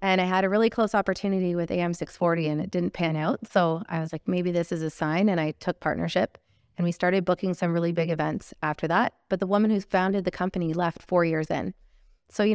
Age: 30-49